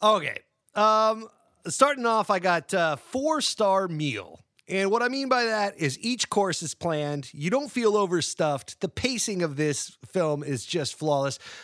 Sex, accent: male, American